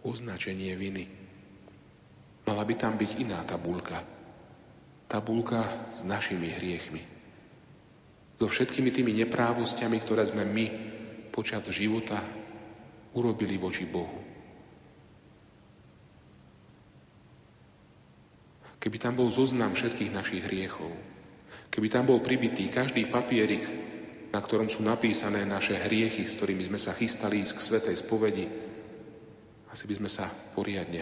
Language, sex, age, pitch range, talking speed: Slovak, male, 40-59, 95-115 Hz, 110 wpm